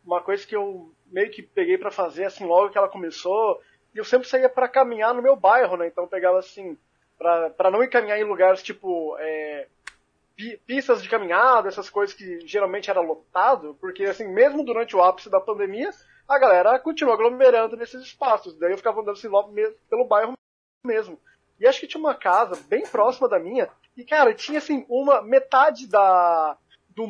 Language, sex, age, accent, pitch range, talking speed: Portuguese, male, 20-39, Brazilian, 200-295 Hz, 195 wpm